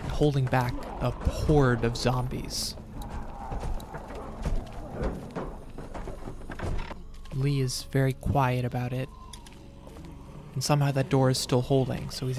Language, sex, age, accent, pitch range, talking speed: English, male, 20-39, American, 115-135 Hz, 100 wpm